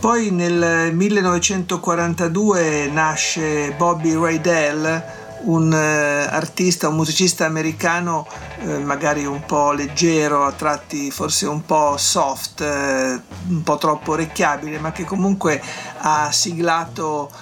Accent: native